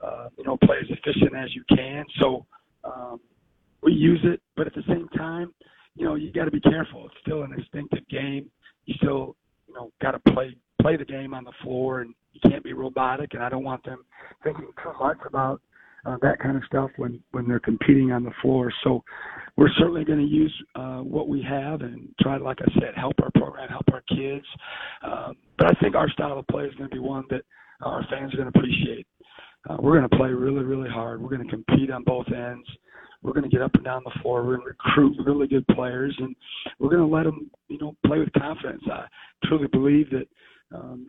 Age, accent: 40-59, American